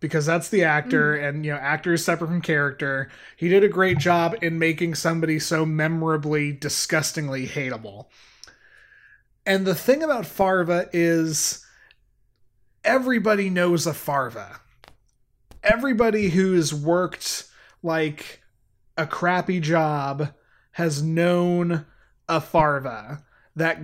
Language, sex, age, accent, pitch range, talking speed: English, male, 20-39, American, 160-190 Hz, 115 wpm